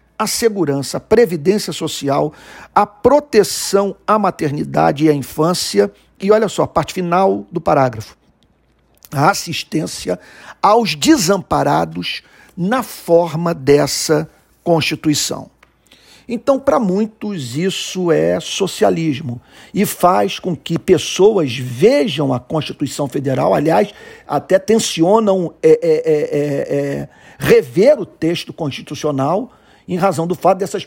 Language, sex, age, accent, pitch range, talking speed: Portuguese, male, 50-69, Brazilian, 150-210 Hz, 105 wpm